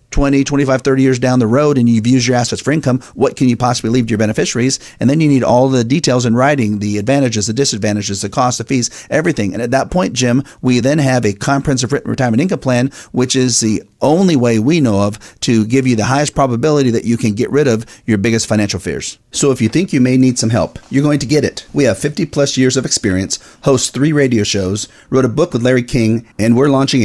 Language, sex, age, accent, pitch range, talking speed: English, male, 40-59, American, 110-135 Hz, 245 wpm